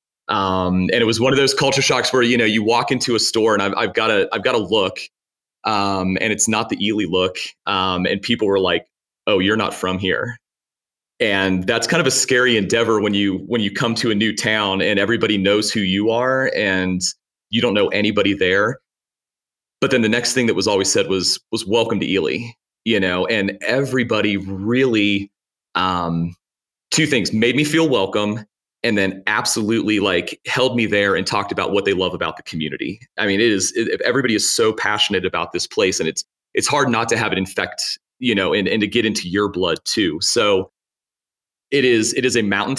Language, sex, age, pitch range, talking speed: English, male, 30-49, 95-120 Hz, 210 wpm